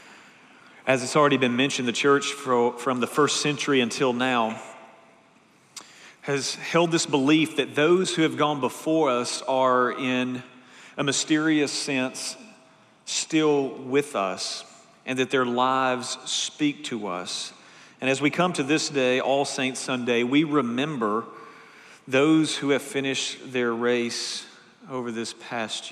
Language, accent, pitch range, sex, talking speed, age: English, American, 125-150 Hz, male, 140 wpm, 40-59